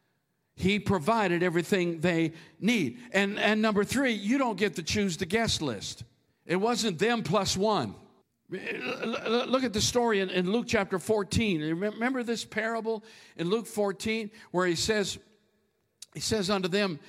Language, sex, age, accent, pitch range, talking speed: English, male, 50-69, American, 170-210 Hz, 160 wpm